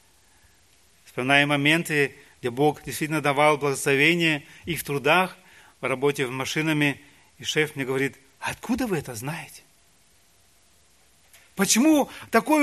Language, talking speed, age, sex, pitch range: Russian, 115 wpm, 30-49, male, 95-155 Hz